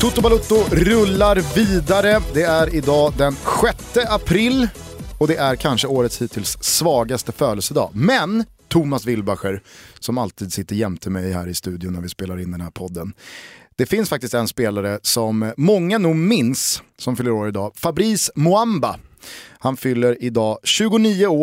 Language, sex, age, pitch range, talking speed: Swedish, male, 30-49, 110-155 Hz, 155 wpm